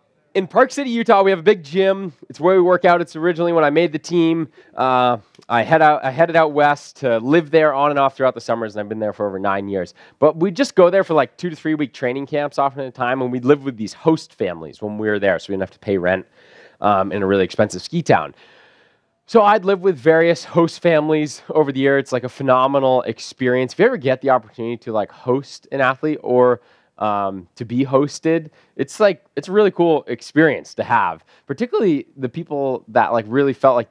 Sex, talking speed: male, 240 wpm